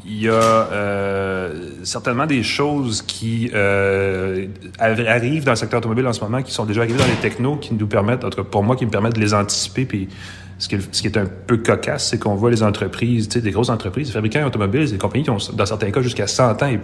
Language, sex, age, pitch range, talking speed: French, male, 30-49, 100-120 Hz, 250 wpm